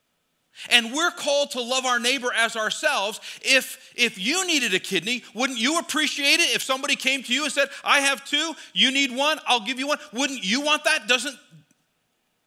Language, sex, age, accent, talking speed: English, male, 40-59, American, 195 wpm